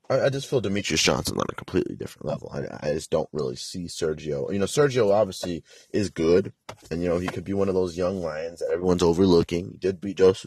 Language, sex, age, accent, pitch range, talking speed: English, male, 30-49, American, 80-110 Hz, 235 wpm